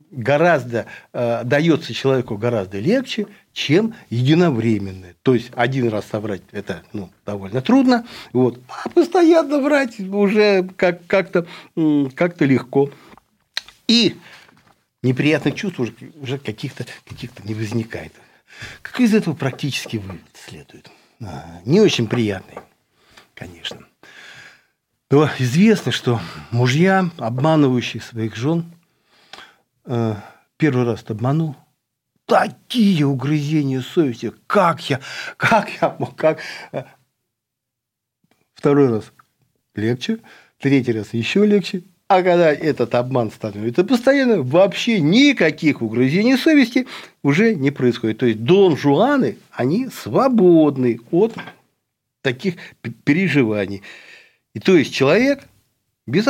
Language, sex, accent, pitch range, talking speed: Russian, male, native, 115-185 Hz, 100 wpm